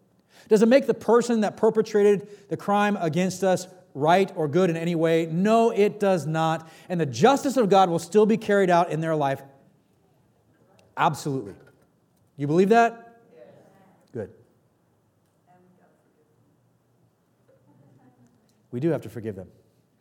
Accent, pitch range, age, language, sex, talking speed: American, 115-165 Hz, 40-59, English, male, 135 wpm